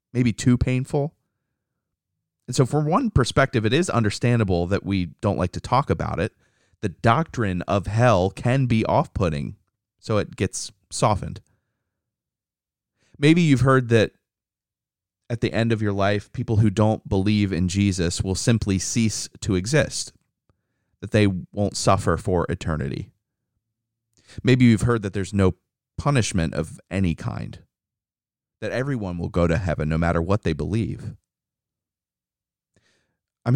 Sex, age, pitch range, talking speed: male, 30-49, 95-120 Hz, 140 wpm